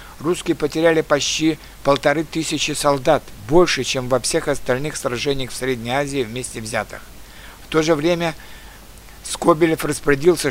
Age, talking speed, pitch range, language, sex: 60-79, 130 wpm, 130-155 Hz, Russian, male